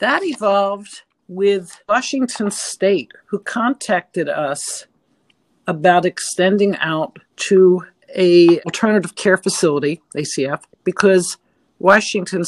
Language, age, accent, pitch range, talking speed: English, 60-79, American, 165-200 Hz, 90 wpm